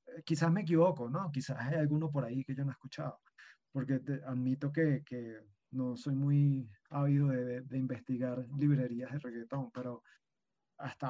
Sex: male